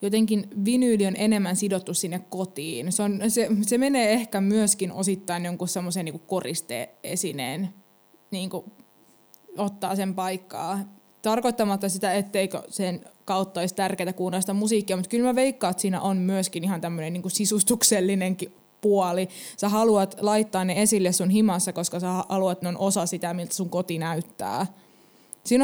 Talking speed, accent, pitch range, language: 150 wpm, native, 185-210 Hz, Finnish